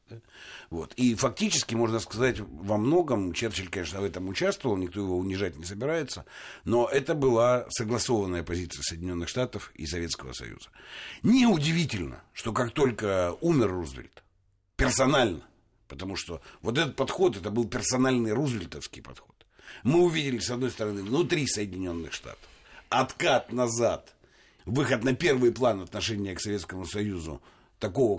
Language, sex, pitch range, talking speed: Russian, male, 95-135 Hz, 130 wpm